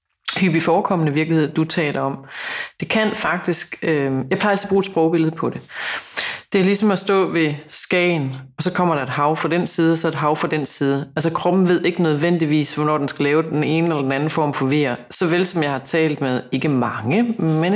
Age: 30-49